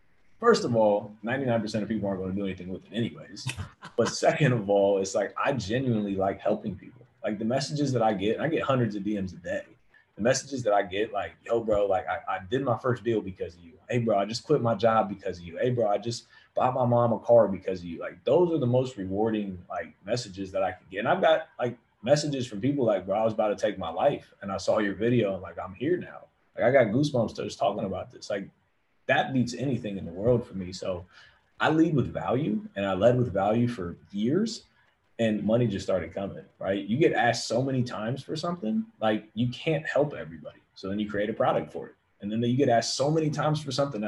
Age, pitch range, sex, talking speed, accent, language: 30-49, 100-130 Hz, male, 250 wpm, American, English